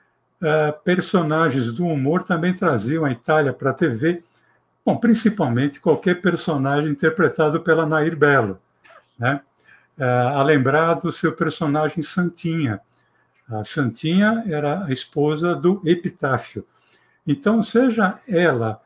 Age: 60-79